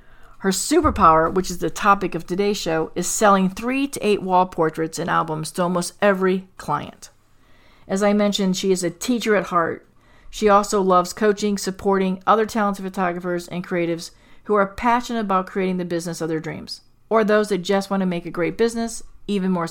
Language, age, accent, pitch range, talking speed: English, 40-59, American, 180-210 Hz, 190 wpm